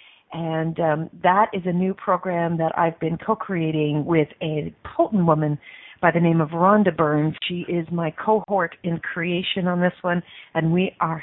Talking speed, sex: 175 wpm, female